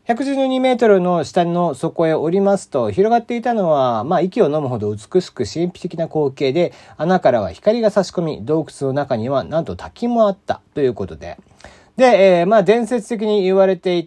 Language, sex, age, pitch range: Japanese, male, 40-59, 125-195 Hz